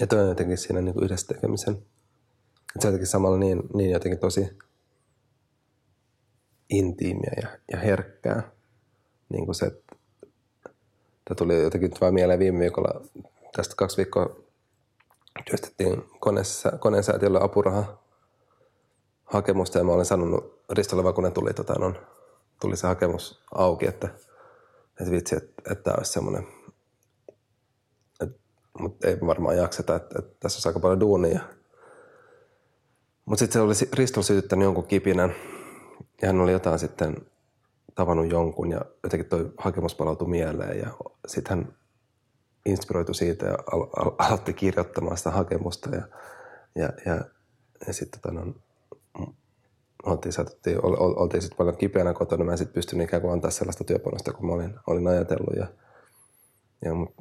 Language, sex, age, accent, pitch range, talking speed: Finnish, male, 30-49, native, 90-115 Hz, 140 wpm